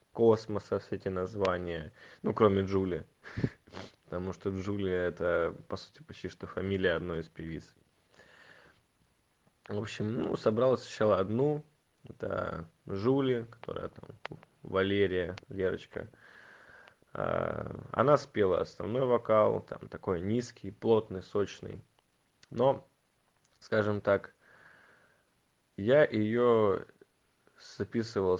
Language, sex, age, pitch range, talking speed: Russian, male, 20-39, 95-115 Hz, 95 wpm